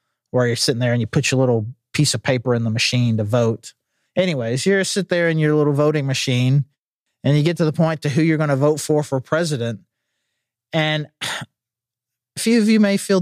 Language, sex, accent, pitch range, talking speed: English, male, American, 145-195 Hz, 220 wpm